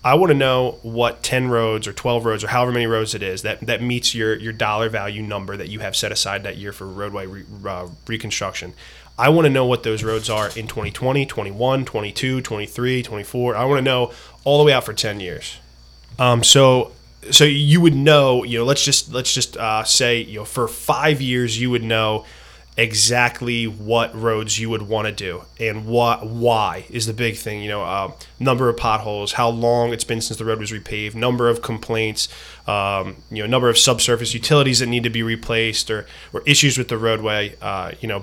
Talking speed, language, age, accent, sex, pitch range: 215 wpm, English, 20-39, American, male, 110-125 Hz